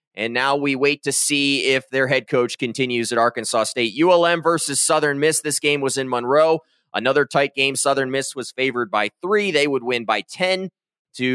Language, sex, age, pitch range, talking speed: English, male, 20-39, 130-155 Hz, 200 wpm